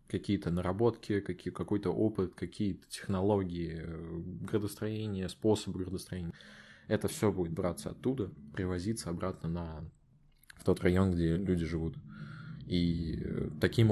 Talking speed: 110 wpm